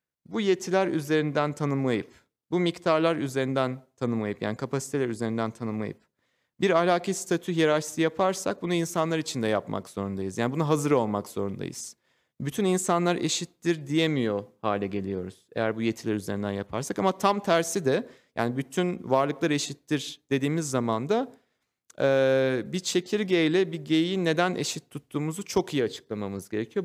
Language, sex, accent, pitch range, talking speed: Turkish, male, native, 125-175 Hz, 135 wpm